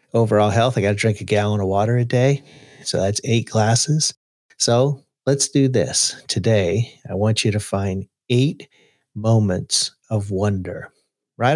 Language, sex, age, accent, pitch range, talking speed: English, male, 50-69, American, 100-135 Hz, 155 wpm